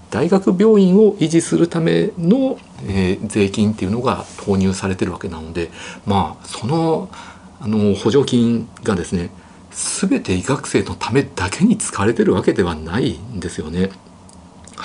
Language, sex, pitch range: Japanese, male, 90-125 Hz